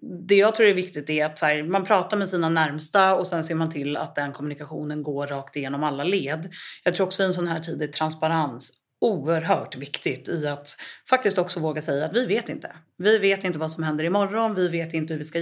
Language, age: Swedish, 30-49